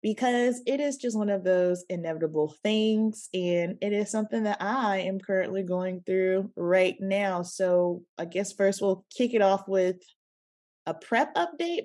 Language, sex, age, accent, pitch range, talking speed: English, female, 20-39, American, 170-210 Hz, 165 wpm